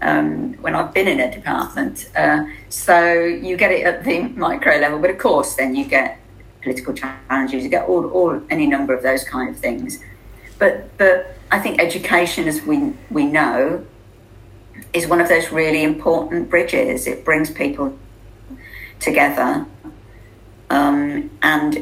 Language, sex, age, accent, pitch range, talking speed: English, female, 50-69, British, 125-180 Hz, 155 wpm